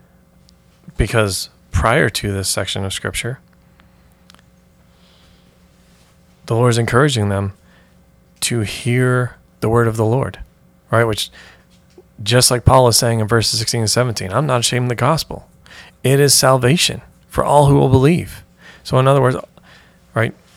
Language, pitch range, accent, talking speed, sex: English, 100-125 Hz, American, 145 wpm, male